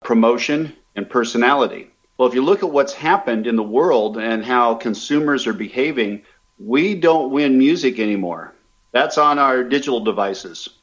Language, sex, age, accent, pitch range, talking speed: English, male, 50-69, American, 120-155 Hz, 155 wpm